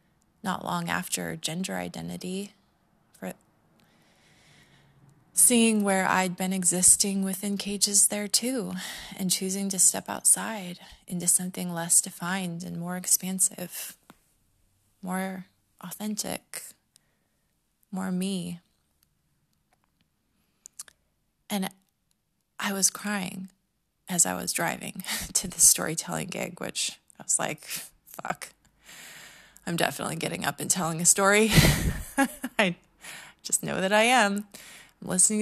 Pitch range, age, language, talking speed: 165-195 Hz, 20-39, English, 110 wpm